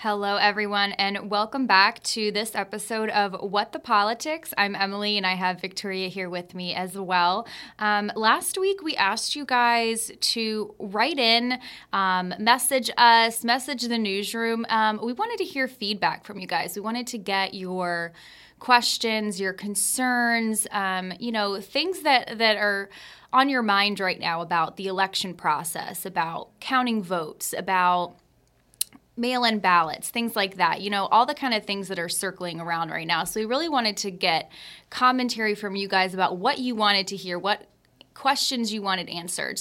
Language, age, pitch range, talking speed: English, 10-29, 190-235 Hz, 175 wpm